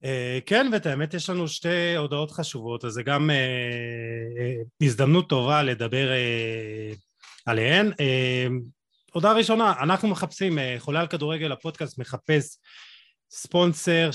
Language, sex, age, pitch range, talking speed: Hebrew, male, 30-49, 120-145 Hz, 125 wpm